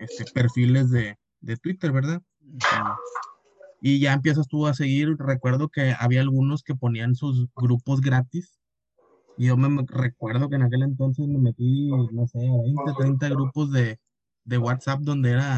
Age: 20-39